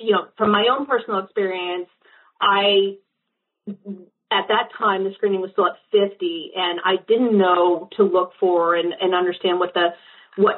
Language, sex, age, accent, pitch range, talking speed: English, female, 30-49, American, 195-250 Hz, 170 wpm